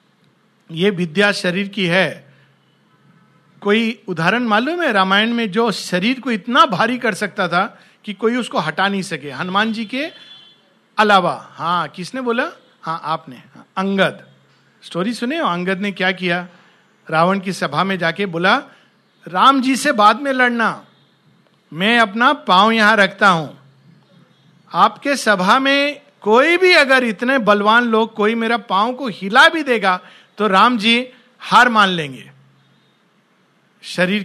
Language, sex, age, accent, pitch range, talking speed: Hindi, male, 50-69, native, 180-255 Hz, 145 wpm